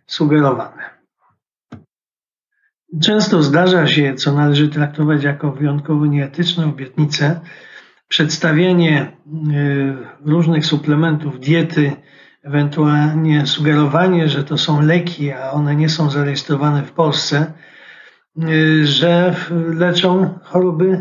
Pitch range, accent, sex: 150-180 Hz, native, male